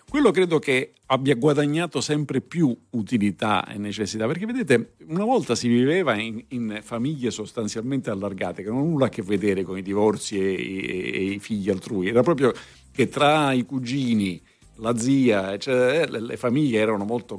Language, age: Italian, 50-69